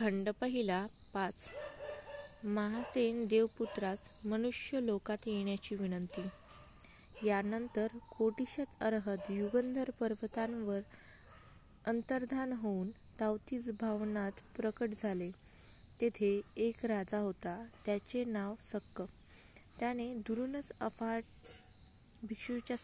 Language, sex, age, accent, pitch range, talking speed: Marathi, female, 20-39, native, 205-240 Hz, 80 wpm